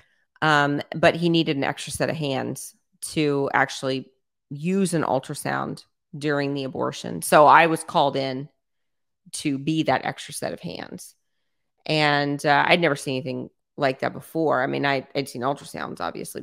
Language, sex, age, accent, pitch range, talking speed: English, female, 30-49, American, 140-160 Hz, 165 wpm